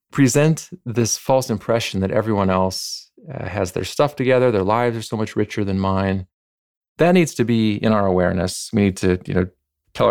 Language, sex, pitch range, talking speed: English, male, 95-120 Hz, 195 wpm